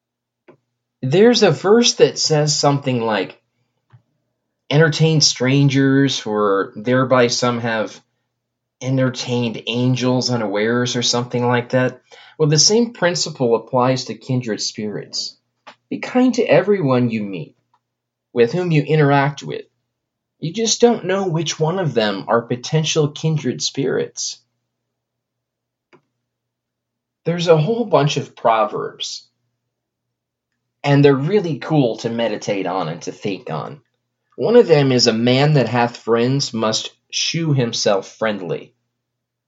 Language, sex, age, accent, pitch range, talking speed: English, male, 20-39, American, 120-150 Hz, 125 wpm